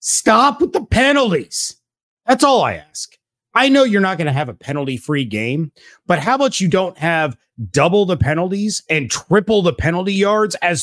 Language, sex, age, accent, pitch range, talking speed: English, male, 30-49, American, 140-200 Hz, 185 wpm